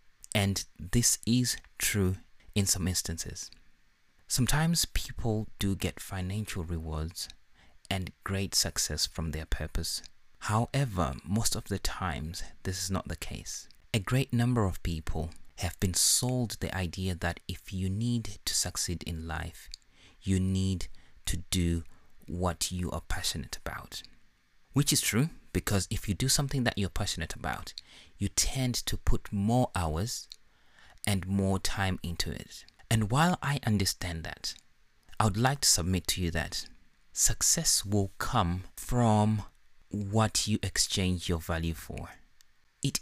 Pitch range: 85-110 Hz